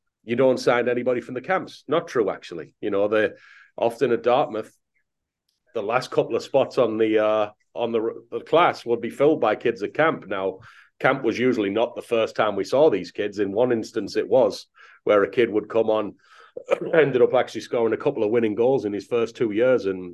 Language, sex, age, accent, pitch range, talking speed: English, male, 30-49, British, 110-160 Hz, 220 wpm